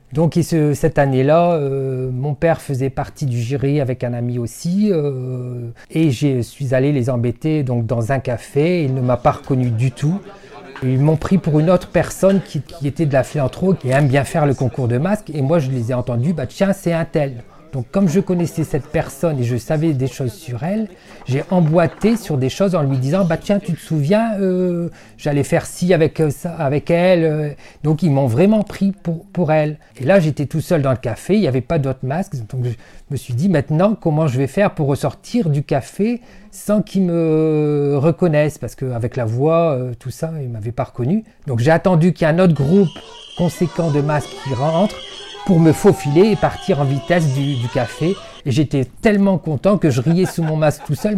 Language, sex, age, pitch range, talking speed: French, male, 40-59, 135-175 Hz, 225 wpm